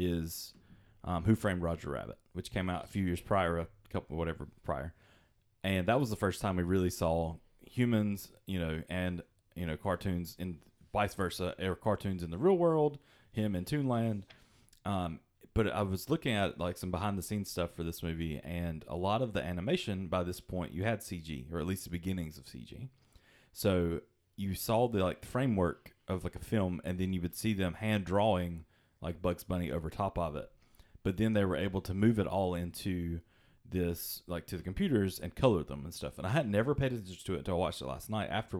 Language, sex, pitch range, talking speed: English, male, 85-105 Hz, 215 wpm